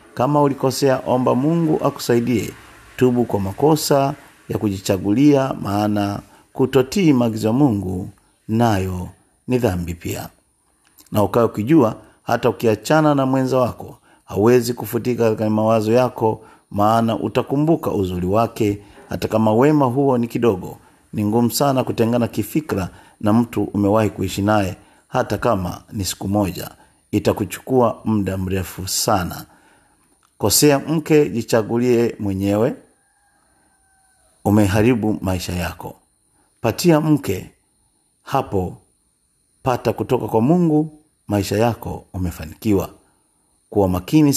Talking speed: 110 wpm